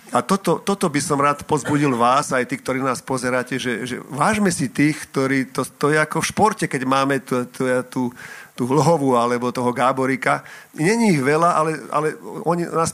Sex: male